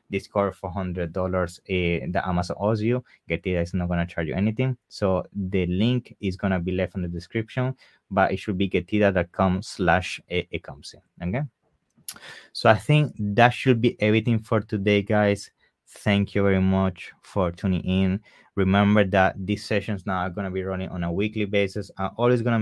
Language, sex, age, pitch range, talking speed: English, male, 20-39, 90-105 Hz, 180 wpm